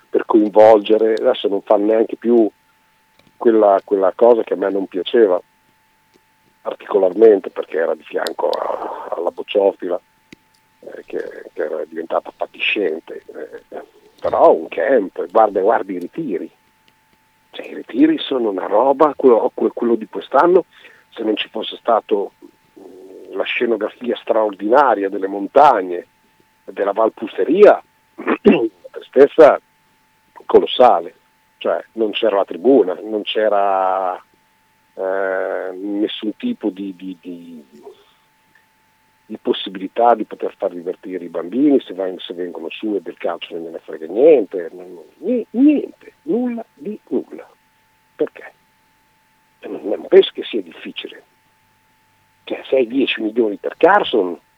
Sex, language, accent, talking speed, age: male, Italian, native, 125 wpm, 50-69